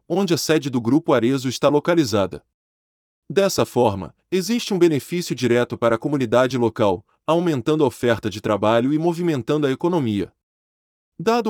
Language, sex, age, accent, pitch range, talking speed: Portuguese, male, 20-39, Brazilian, 110-165 Hz, 145 wpm